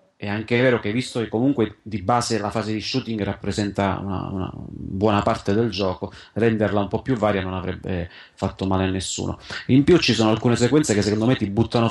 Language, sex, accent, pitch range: Italian, male, native, 100-115 Hz